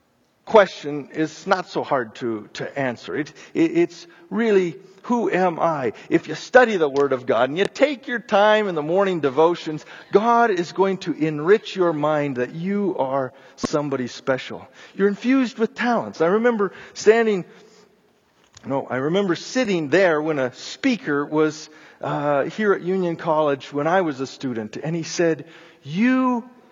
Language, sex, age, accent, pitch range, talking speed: English, male, 50-69, American, 145-210 Hz, 160 wpm